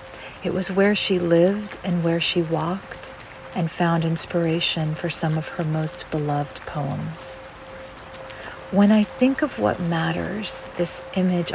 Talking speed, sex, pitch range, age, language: 140 wpm, female, 155-175 Hz, 40-59, English